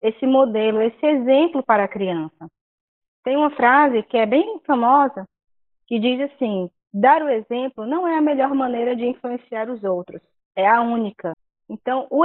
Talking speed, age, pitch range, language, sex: 165 wpm, 20-39, 225-285 Hz, Portuguese, female